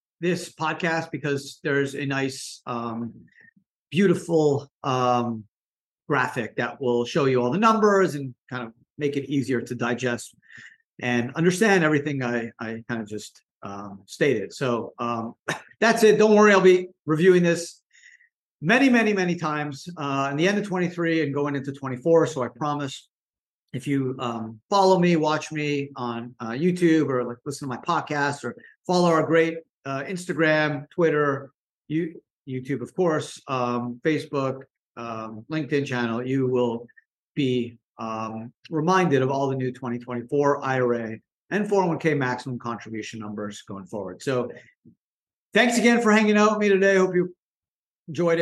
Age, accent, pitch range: 40-59, American, 125-170 Hz